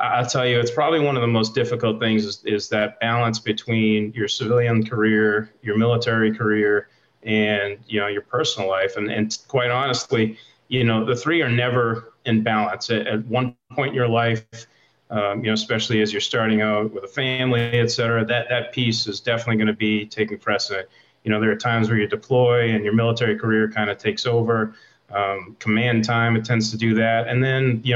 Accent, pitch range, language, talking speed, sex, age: American, 110-125 Hz, English, 205 wpm, male, 30-49